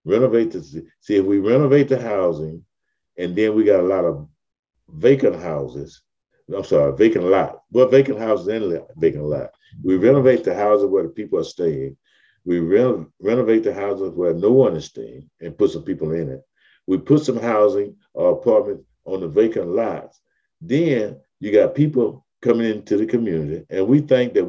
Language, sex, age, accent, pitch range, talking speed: English, male, 50-69, American, 85-140 Hz, 185 wpm